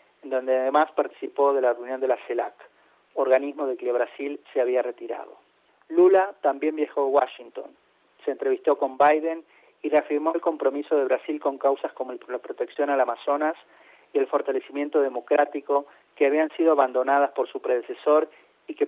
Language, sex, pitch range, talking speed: Spanish, male, 135-155 Hz, 160 wpm